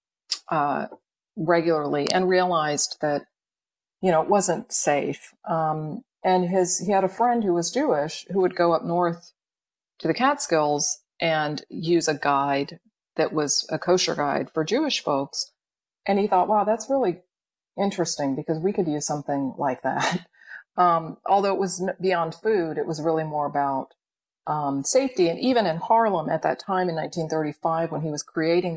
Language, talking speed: English, 165 wpm